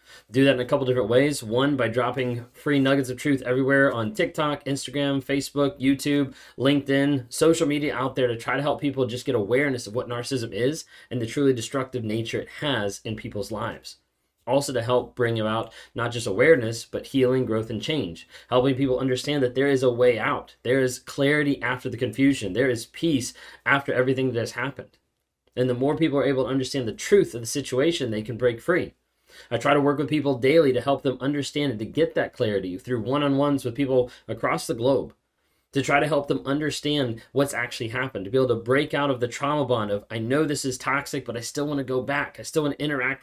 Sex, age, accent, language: male, 20-39, American, English